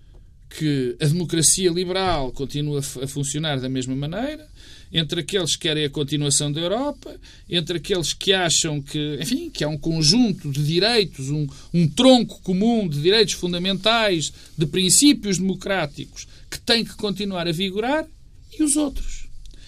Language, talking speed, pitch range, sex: Portuguese, 145 wpm, 165-260 Hz, male